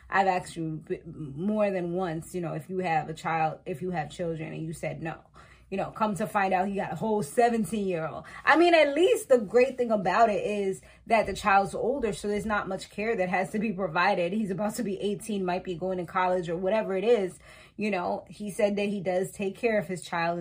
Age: 20-39